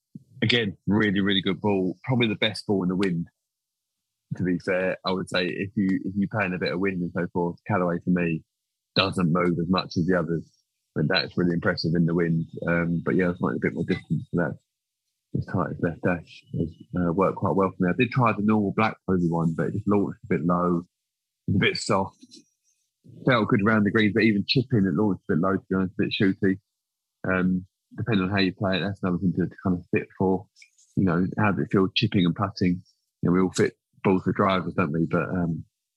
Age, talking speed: 20-39, 235 wpm